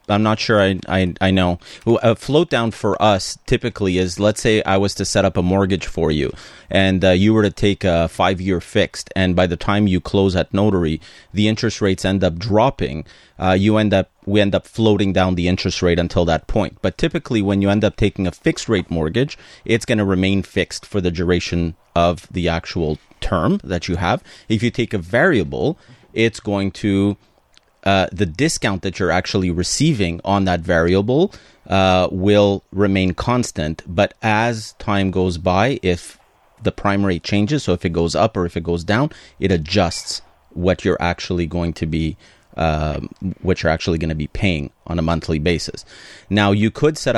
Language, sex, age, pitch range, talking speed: English, male, 30-49, 90-105 Hz, 195 wpm